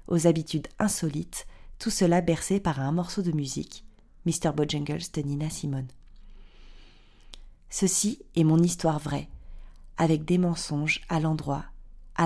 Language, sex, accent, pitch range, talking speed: French, female, French, 150-185 Hz, 140 wpm